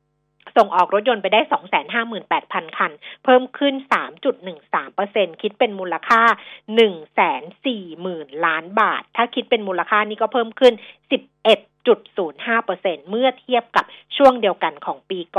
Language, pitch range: Thai, 190-255 Hz